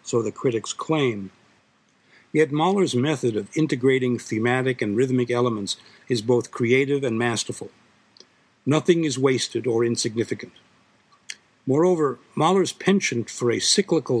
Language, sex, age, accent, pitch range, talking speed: English, male, 60-79, American, 115-145 Hz, 125 wpm